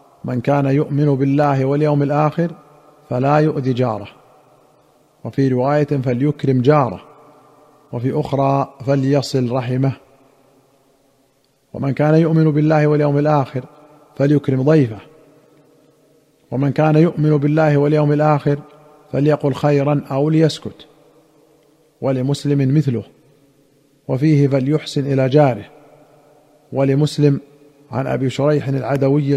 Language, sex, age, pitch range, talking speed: Arabic, male, 40-59, 135-150 Hz, 95 wpm